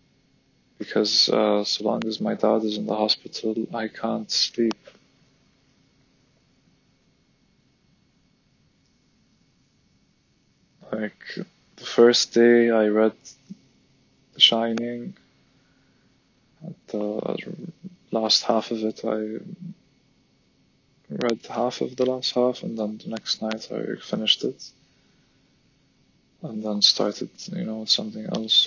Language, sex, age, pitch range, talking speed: English, male, 20-39, 105-120 Hz, 105 wpm